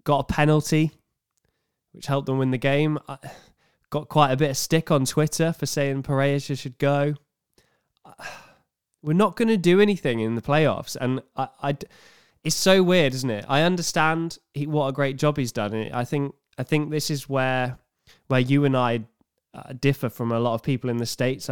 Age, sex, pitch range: 10-29, male, 120-150 Hz